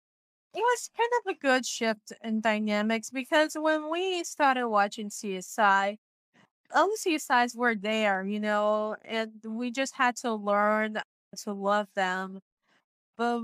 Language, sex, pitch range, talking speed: English, female, 205-235 Hz, 145 wpm